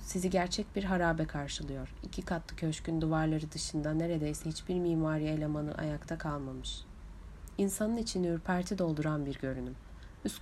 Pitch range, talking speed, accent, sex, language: 150-185 Hz, 130 wpm, native, female, Turkish